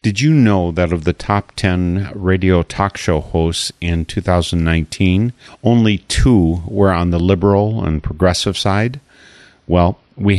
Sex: male